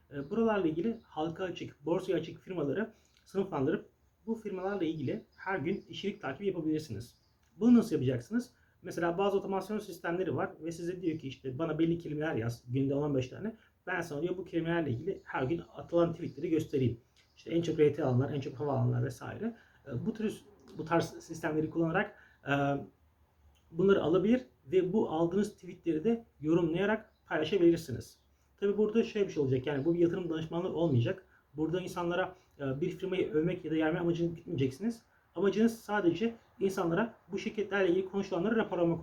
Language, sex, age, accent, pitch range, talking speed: Turkish, male, 40-59, native, 145-195 Hz, 155 wpm